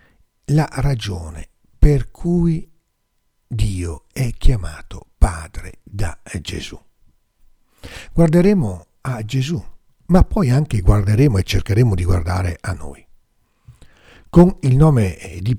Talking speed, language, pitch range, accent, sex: 105 wpm, Italian, 95-145 Hz, native, male